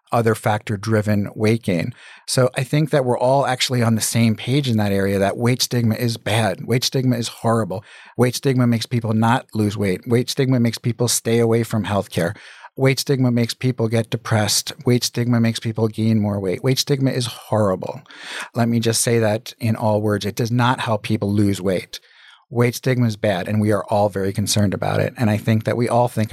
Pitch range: 105-125 Hz